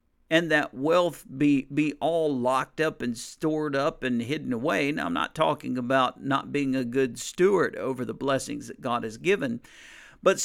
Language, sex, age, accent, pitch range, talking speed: English, male, 50-69, American, 125-180 Hz, 185 wpm